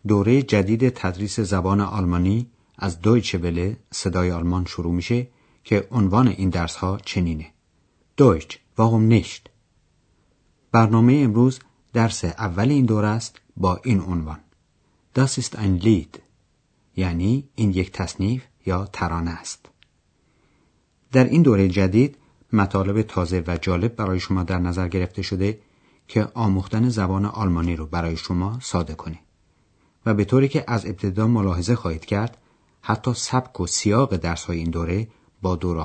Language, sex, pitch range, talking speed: Persian, male, 90-115 Hz, 140 wpm